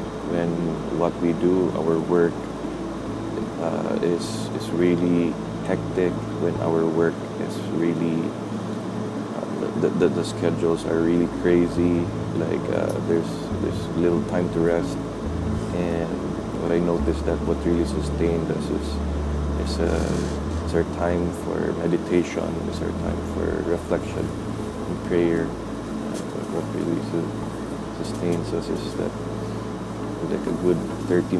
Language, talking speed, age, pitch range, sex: English, 130 wpm, 20-39, 85-95 Hz, male